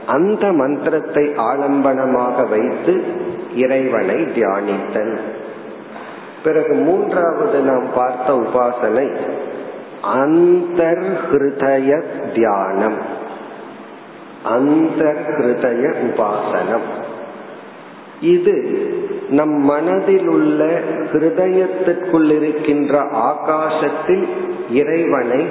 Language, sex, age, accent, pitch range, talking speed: Tamil, male, 50-69, native, 135-180 Hz, 45 wpm